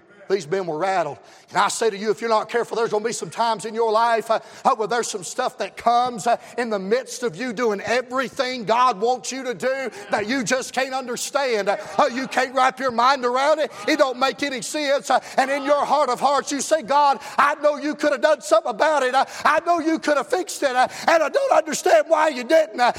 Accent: American